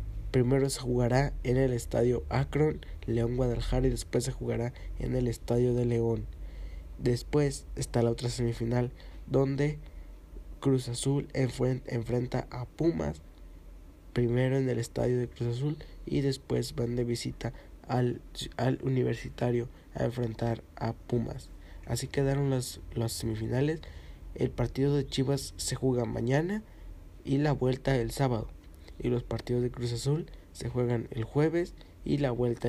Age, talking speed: 20-39, 145 wpm